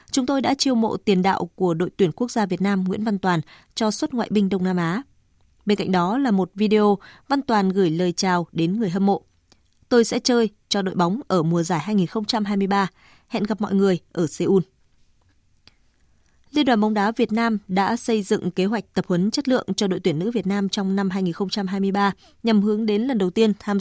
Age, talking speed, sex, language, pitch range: 20-39, 215 wpm, female, Vietnamese, 185-225 Hz